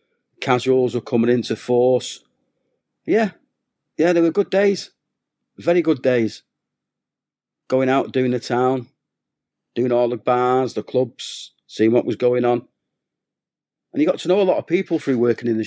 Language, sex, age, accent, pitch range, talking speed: English, male, 40-59, British, 110-140 Hz, 165 wpm